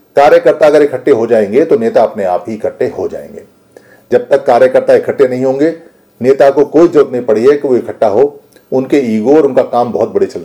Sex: male